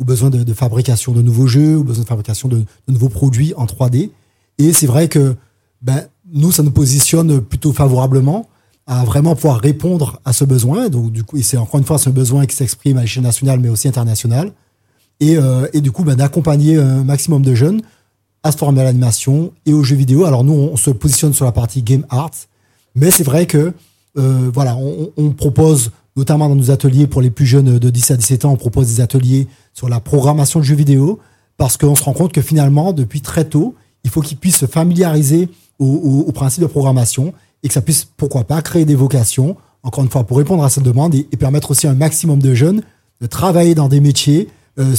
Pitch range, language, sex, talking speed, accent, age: 125-150 Hz, French, male, 230 wpm, French, 30-49